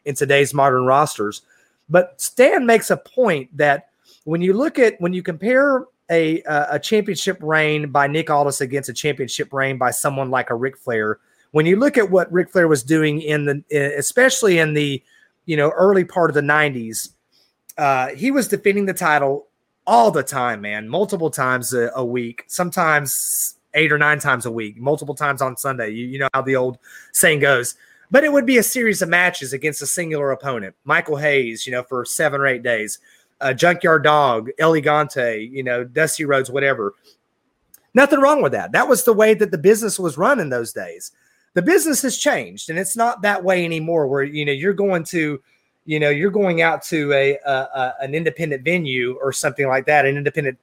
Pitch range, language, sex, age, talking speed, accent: 135-180 Hz, English, male, 30-49, 200 wpm, American